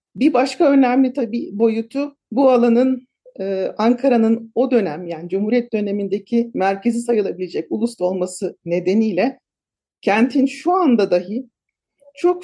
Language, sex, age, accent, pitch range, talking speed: Turkish, male, 50-69, native, 195-260 Hz, 115 wpm